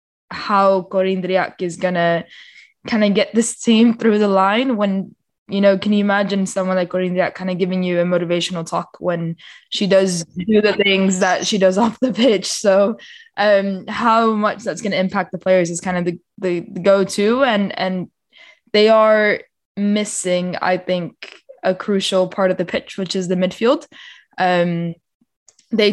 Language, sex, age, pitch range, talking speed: English, female, 20-39, 180-205 Hz, 180 wpm